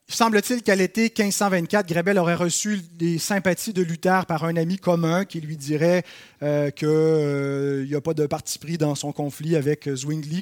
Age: 30-49